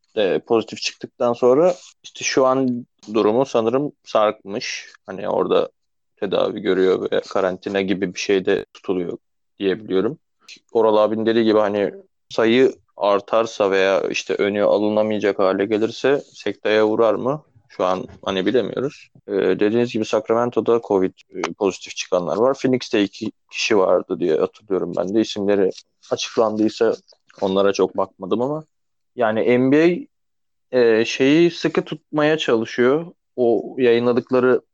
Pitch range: 100-125 Hz